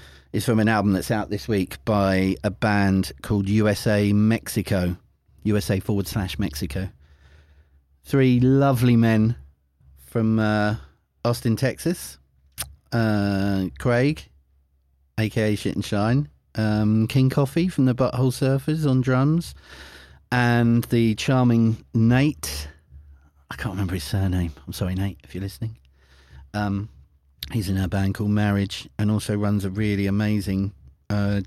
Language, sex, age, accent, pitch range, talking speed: English, male, 40-59, British, 75-115 Hz, 130 wpm